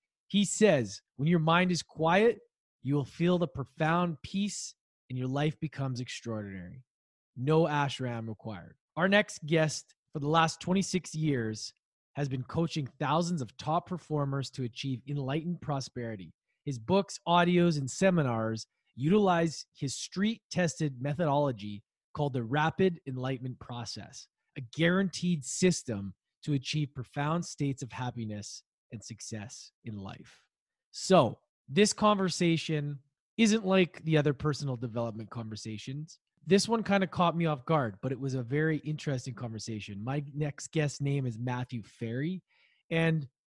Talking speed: 140 wpm